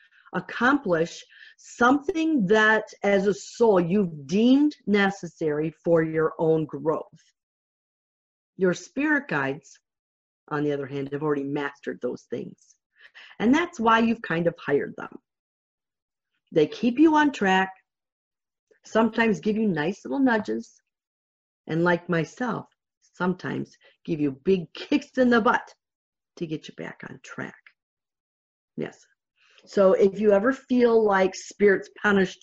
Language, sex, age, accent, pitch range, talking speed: English, female, 40-59, American, 160-260 Hz, 130 wpm